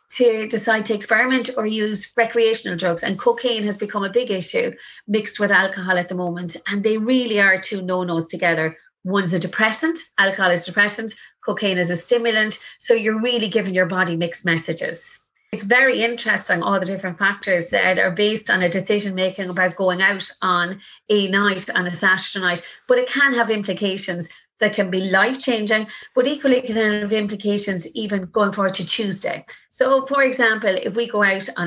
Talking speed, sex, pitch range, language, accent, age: 185 wpm, female, 185-220 Hz, English, Irish, 30-49